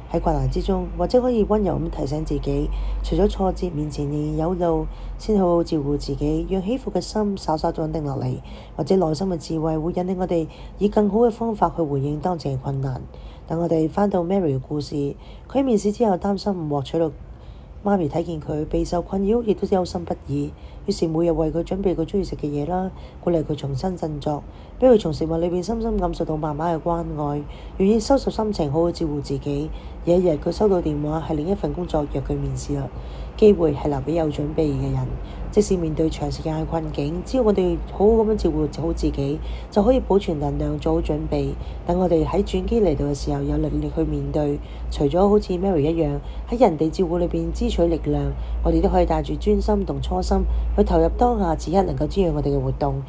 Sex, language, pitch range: female, Chinese, 150-190 Hz